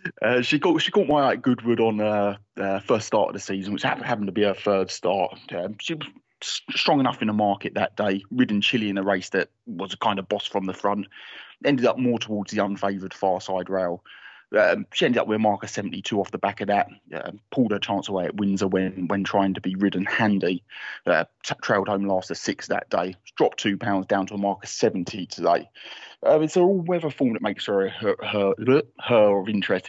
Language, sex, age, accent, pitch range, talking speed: English, male, 20-39, British, 95-105 Hz, 235 wpm